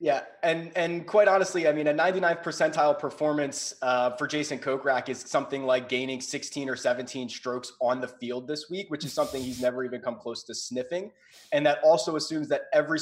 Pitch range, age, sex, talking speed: 125-180 Hz, 20-39, male, 205 wpm